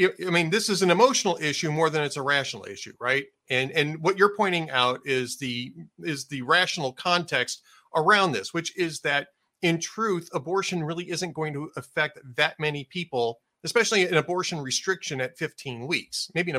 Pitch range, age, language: 135-190 Hz, 40-59, English